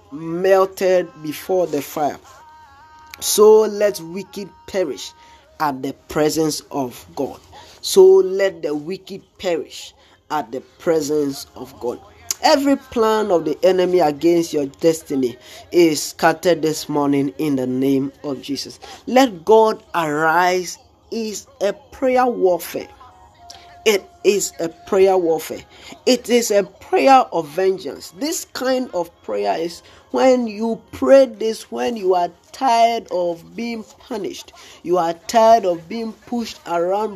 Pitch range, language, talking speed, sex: 165-245 Hz, English, 130 wpm, male